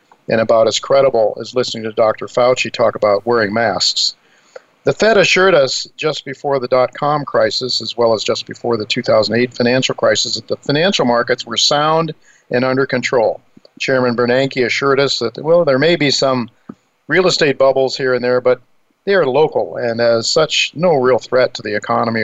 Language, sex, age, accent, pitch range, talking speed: English, male, 50-69, American, 120-140 Hz, 185 wpm